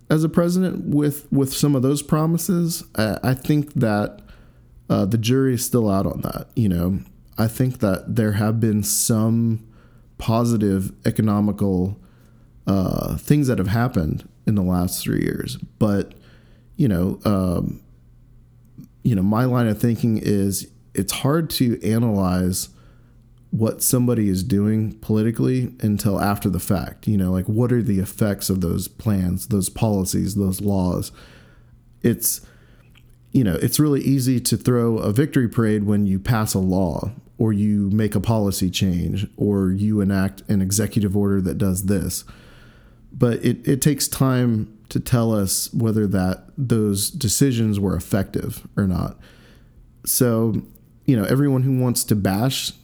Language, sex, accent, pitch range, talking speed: English, male, American, 100-125 Hz, 155 wpm